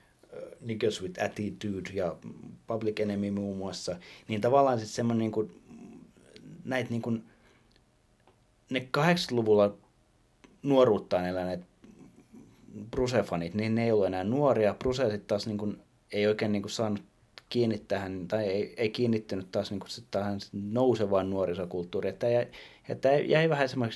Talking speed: 120 wpm